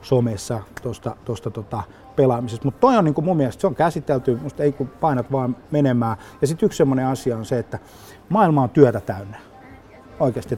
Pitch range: 110-140 Hz